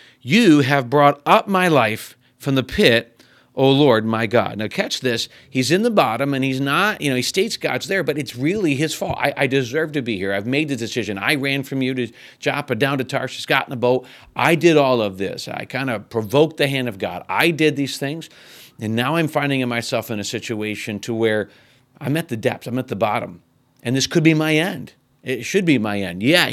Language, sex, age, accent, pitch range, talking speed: English, male, 40-59, American, 120-145 Hz, 235 wpm